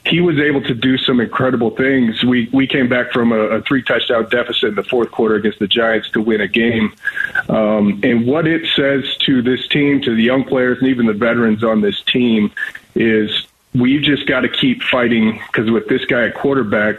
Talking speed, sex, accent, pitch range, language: 210 wpm, male, American, 110-130 Hz, English